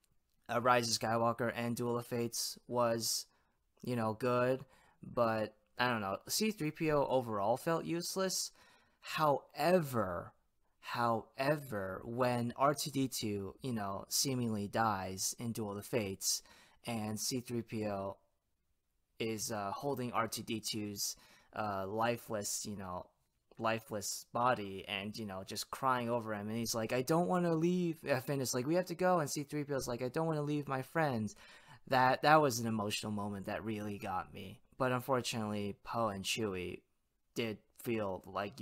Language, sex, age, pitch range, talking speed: English, male, 20-39, 105-130 Hz, 145 wpm